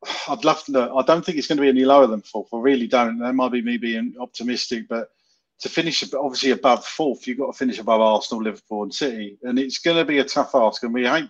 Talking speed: 265 wpm